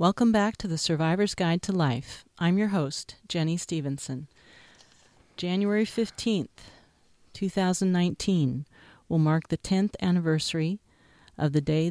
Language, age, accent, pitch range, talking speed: English, 50-69, American, 145-175 Hz, 120 wpm